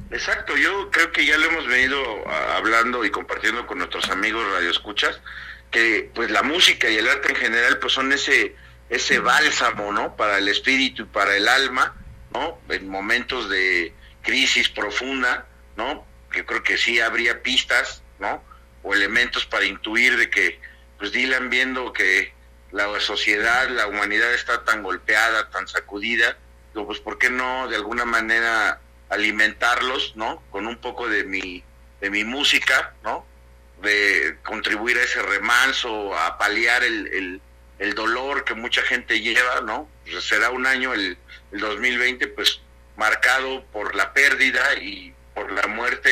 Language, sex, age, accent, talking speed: Spanish, male, 50-69, Mexican, 155 wpm